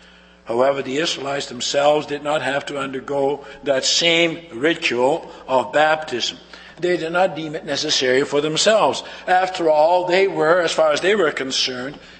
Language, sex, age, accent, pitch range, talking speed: English, male, 60-79, American, 140-200 Hz, 155 wpm